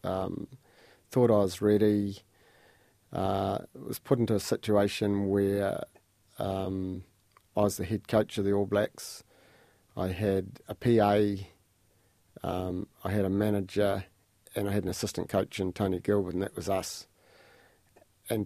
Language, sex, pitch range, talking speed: English, male, 95-110 Hz, 145 wpm